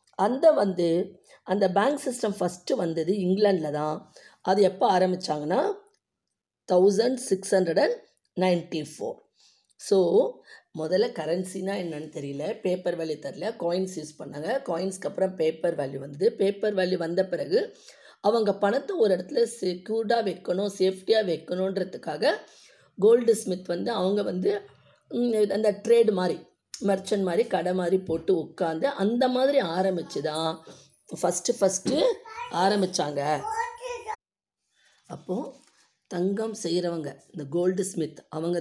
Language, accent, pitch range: Tamil, native, 170-220 Hz